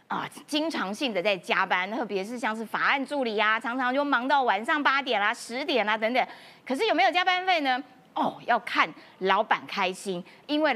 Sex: female